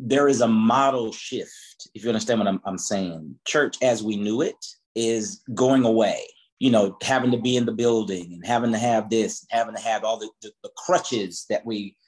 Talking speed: 215 wpm